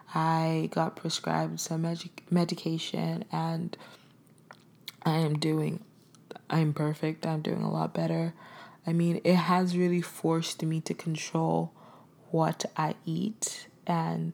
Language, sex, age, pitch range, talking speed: English, female, 20-39, 160-180 Hz, 125 wpm